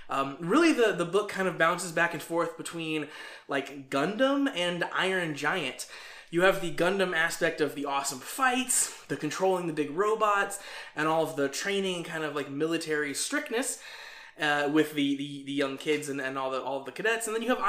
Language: English